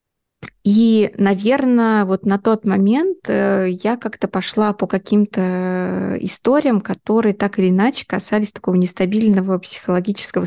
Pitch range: 195-225 Hz